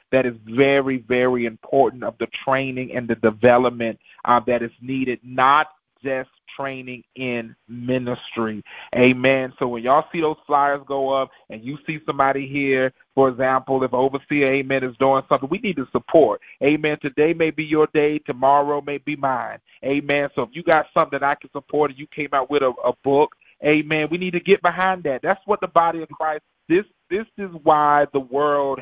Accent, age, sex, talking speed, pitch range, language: American, 30-49, male, 195 wpm, 135-170 Hz, English